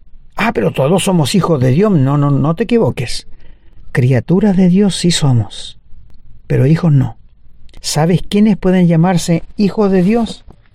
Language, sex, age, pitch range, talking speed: Spanish, male, 50-69, 145-210 Hz, 150 wpm